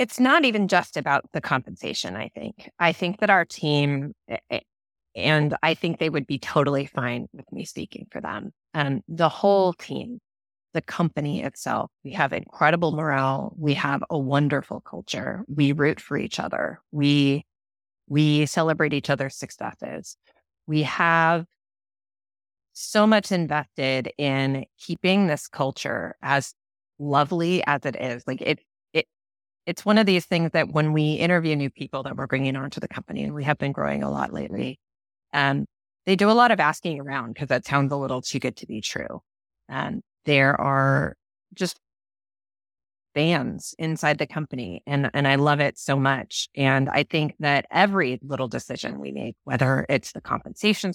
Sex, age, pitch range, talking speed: female, 30-49, 135-170 Hz, 170 wpm